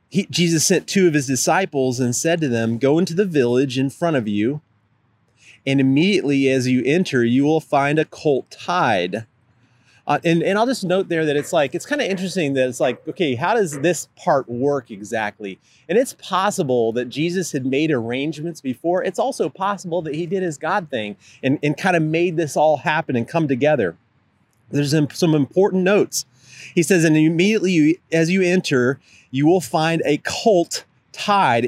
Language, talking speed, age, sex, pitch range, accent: English, 185 wpm, 30-49, male, 130-185 Hz, American